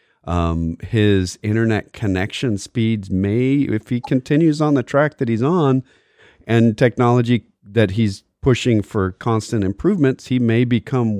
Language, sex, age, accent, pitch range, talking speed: English, male, 40-59, American, 100-135 Hz, 140 wpm